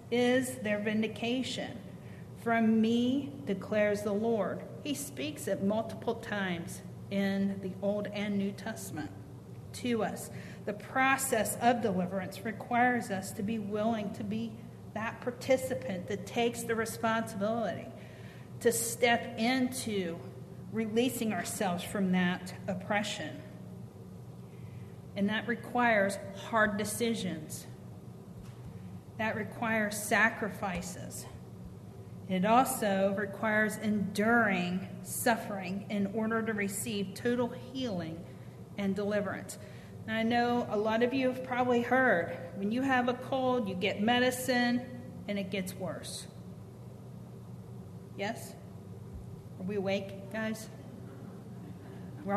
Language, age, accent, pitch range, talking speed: English, 40-59, American, 195-235 Hz, 110 wpm